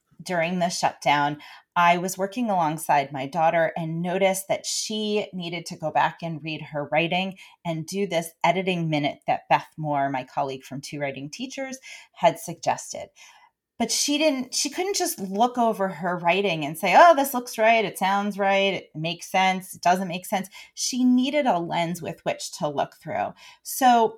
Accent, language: American, English